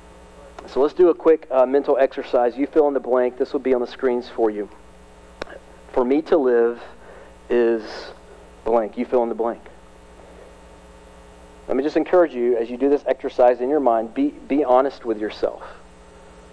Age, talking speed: 40-59, 180 wpm